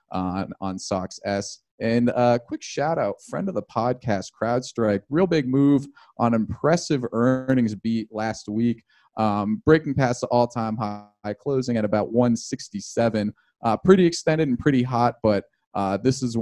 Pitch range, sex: 100-120 Hz, male